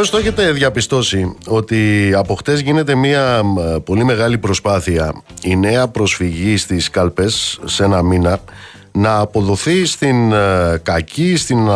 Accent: native